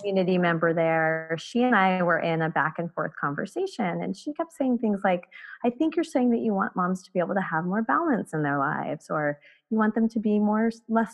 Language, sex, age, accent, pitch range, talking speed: English, female, 20-39, American, 170-210 Hz, 240 wpm